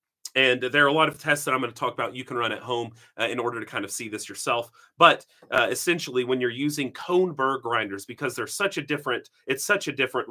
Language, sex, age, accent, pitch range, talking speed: English, male, 30-49, American, 120-150 Hz, 260 wpm